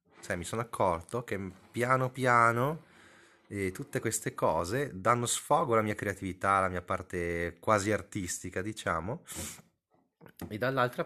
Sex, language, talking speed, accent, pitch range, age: male, Italian, 130 wpm, native, 90-110 Hz, 30-49